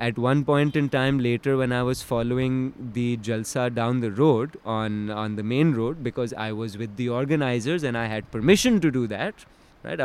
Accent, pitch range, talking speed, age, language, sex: native, 110-145 Hz, 205 wpm, 20-39, Hindi, male